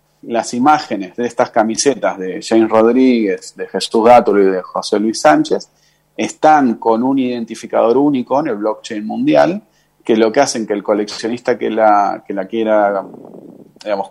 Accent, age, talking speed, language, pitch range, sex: Argentinian, 30-49, 160 wpm, Spanish, 110-140 Hz, male